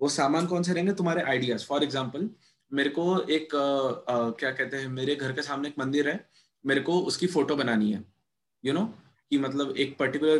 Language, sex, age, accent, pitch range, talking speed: Hindi, male, 20-39, native, 130-155 Hz, 220 wpm